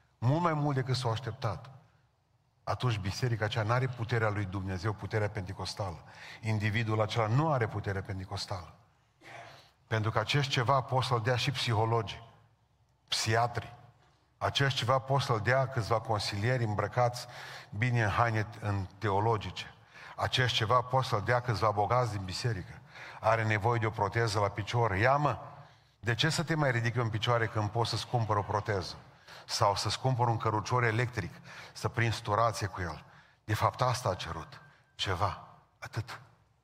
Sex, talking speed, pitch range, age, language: male, 150 wpm, 110-130 Hz, 40-59, Romanian